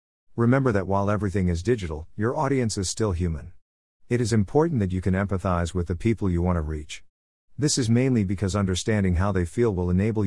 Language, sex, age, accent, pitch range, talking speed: English, male, 50-69, American, 90-115 Hz, 205 wpm